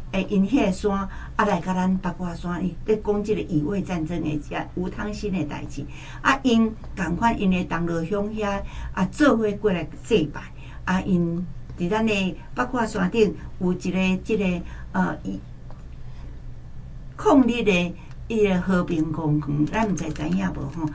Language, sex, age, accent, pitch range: Chinese, female, 60-79, American, 155-210 Hz